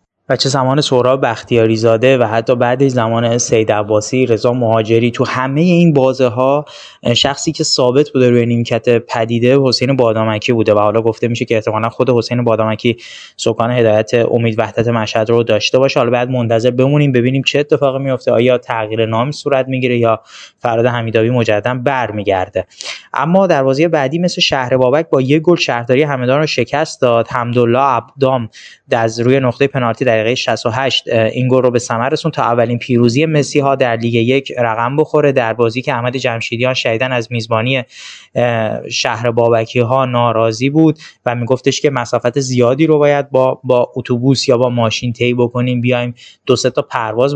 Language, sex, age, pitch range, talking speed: Persian, male, 20-39, 115-135 Hz, 165 wpm